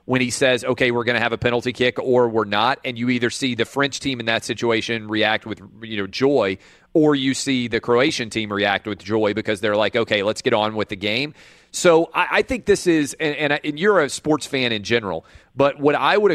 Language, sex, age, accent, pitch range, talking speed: English, male, 30-49, American, 110-135 Hz, 250 wpm